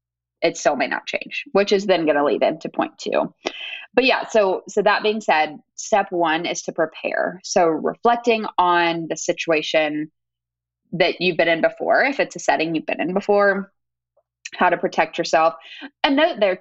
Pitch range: 165-225 Hz